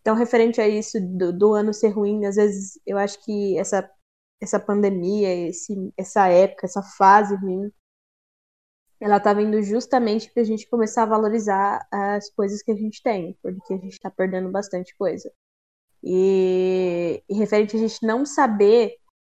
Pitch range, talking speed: 205-260 Hz, 160 wpm